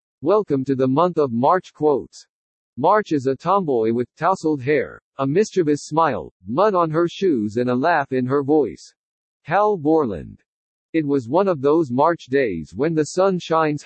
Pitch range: 135-175 Hz